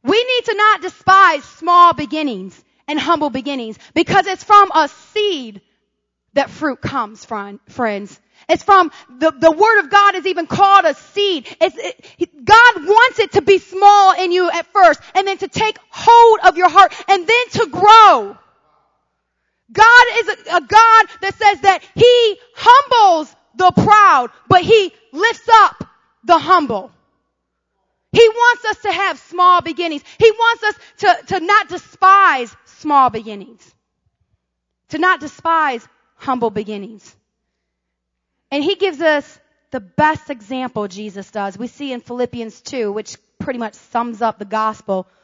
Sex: female